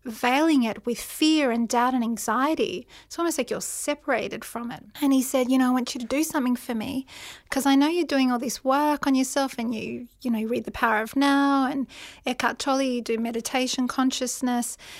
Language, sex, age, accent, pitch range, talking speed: English, female, 40-59, Australian, 230-265 Hz, 220 wpm